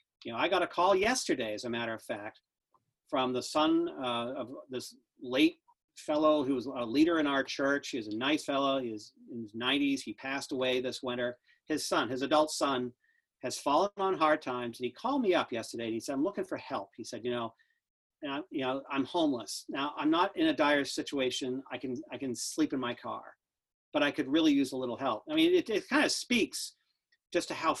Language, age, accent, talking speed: English, 40-59, American, 230 wpm